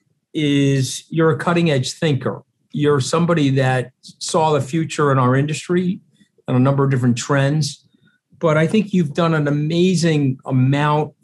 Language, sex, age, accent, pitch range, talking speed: English, male, 50-69, American, 125-155 Hz, 155 wpm